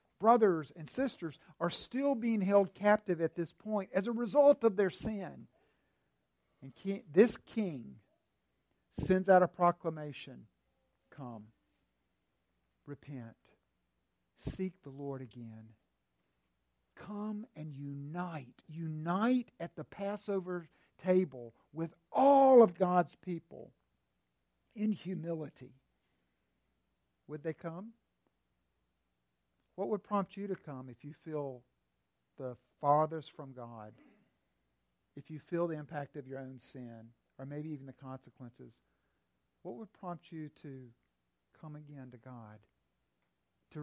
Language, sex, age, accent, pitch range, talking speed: English, male, 60-79, American, 115-185 Hz, 115 wpm